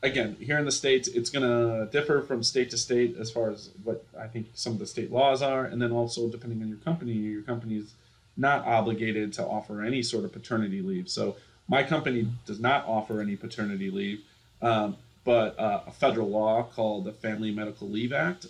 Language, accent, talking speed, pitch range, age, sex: English, American, 205 wpm, 110-125 Hz, 30-49, male